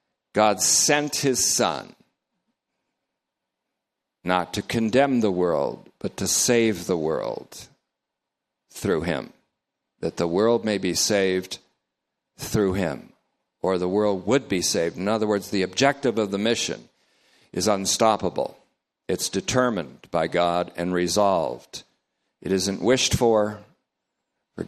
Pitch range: 95-115 Hz